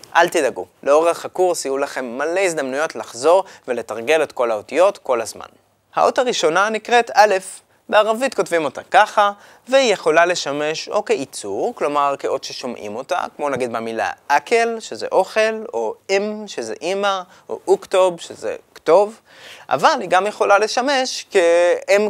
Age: 20-39